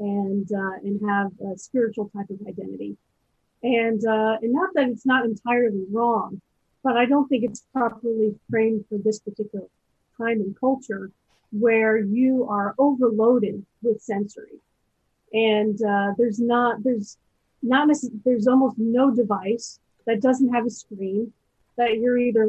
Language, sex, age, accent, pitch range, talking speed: English, female, 30-49, American, 210-245 Hz, 150 wpm